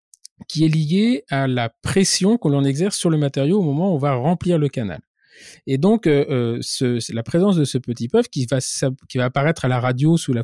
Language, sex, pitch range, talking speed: French, male, 130-185 Hz, 230 wpm